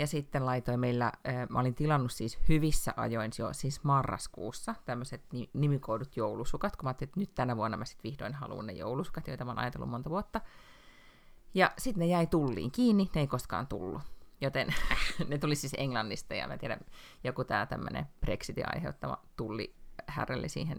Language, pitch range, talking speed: Finnish, 120-155 Hz, 170 wpm